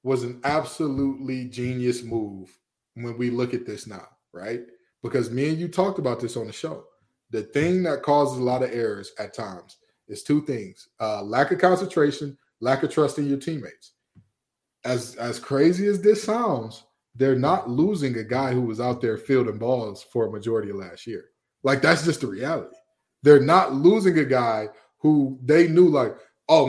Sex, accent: male, American